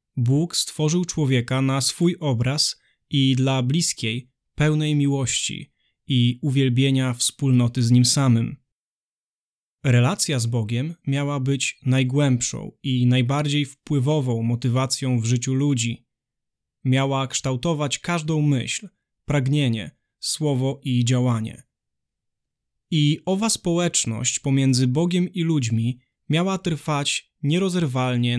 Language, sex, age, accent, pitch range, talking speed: Polish, male, 20-39, native, 125-155 Hz, 100 wpm